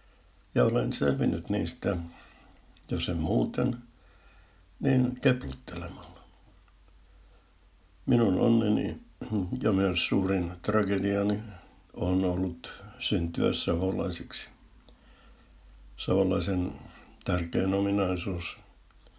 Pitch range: 85-100 Hz